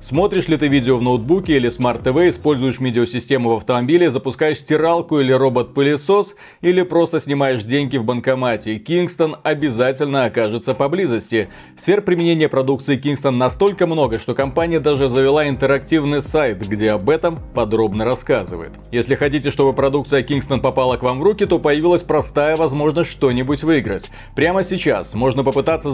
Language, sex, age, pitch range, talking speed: Russian, male, 30-49, 125-160 Hz, 150 wpm